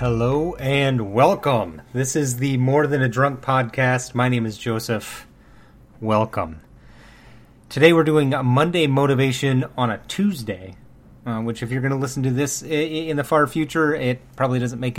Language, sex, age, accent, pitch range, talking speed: English, male, 30-49, American, 125-150 Hz, 170 wpm